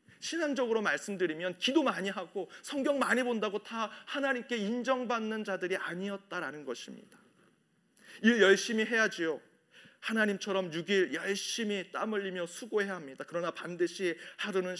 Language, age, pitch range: Korean, 40-59, 155-205 Hz